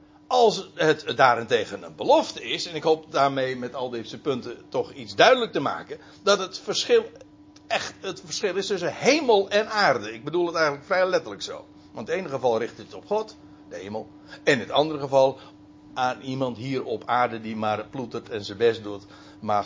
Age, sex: 60-79, male